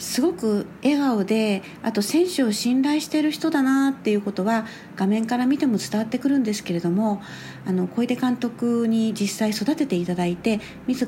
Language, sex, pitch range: Japanese, female, 190-270 Hz